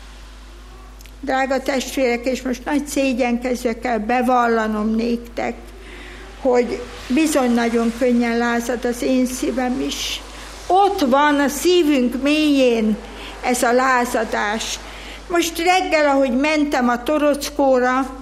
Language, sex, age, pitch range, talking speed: Hungarian, female, 60-79, 235-280 Hz, 100 wpm